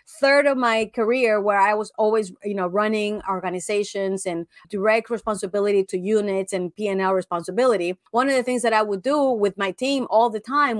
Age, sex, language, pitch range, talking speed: 30-49, female, English, 200-260 Hz, 190 wpm